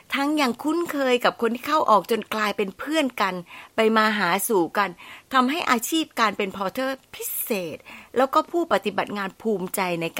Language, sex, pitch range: Thai, female, 170-245 Hz